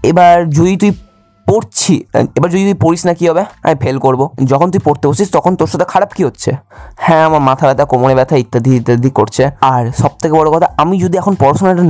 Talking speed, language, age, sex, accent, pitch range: 200 wpm, Bengali, 20-39, male, native, 120-155 Hz